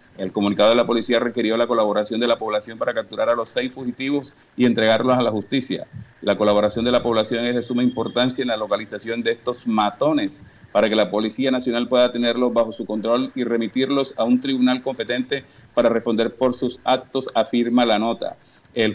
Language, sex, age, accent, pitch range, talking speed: Spanish, male, 40-59, Venezuelan, 115-130 Hz, 195 wpm